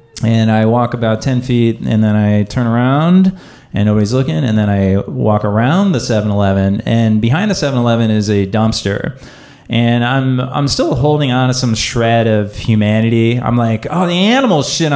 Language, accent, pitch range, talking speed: English, American, 115-135 Hz, 190 wpm